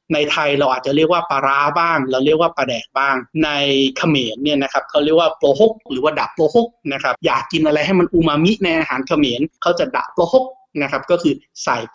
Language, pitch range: Thai, 135-180 Hz